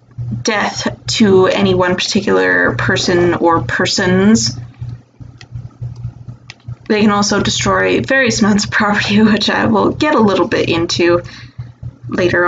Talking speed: 120 wpm